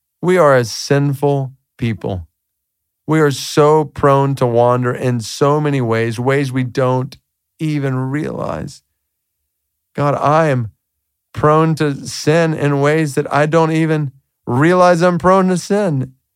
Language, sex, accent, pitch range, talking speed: English, male, American, 125-160 Hz, 135 wpm